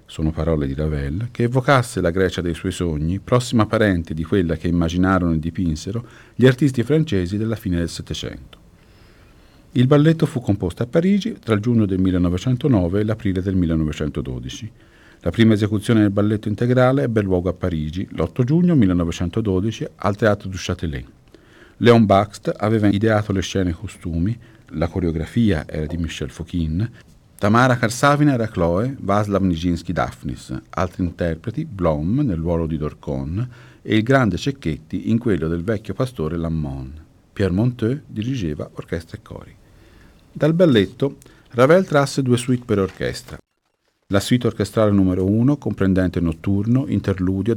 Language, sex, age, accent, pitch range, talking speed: Italian, male, 50-69, native, 85-115 Hz, 150 wpm